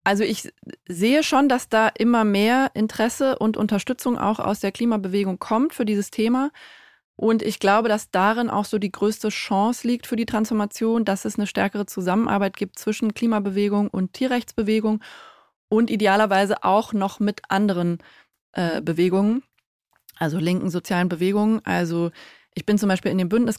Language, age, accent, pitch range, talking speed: German, 20-39, German, 185-220 Hz, 160 wpm